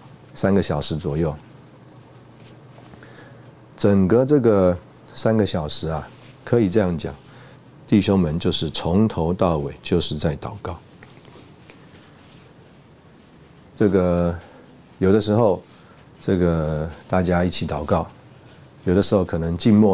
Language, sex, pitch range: Chinese, male, 80-100 Hz